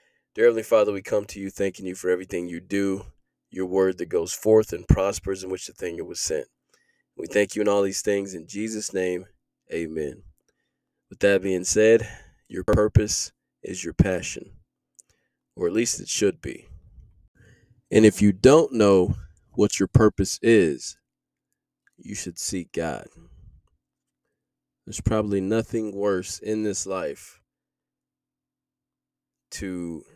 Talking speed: 145 wpm